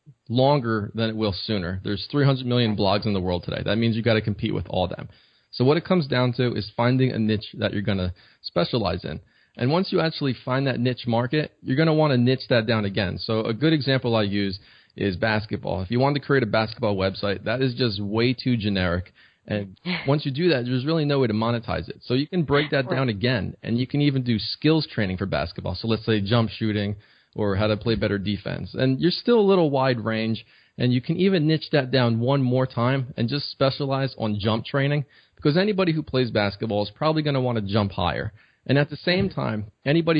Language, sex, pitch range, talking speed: English, male, 110-140 Hz, 235 wpm